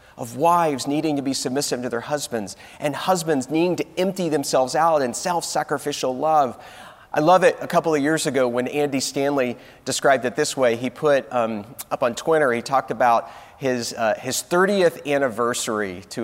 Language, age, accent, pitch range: English, 30-49, American, 115-145 Hz